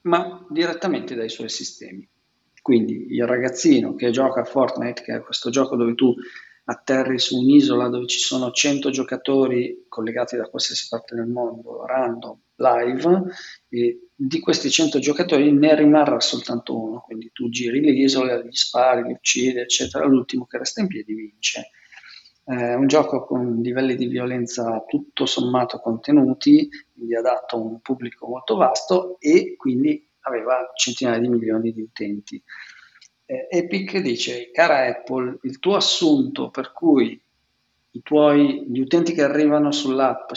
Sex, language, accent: male, Italian, native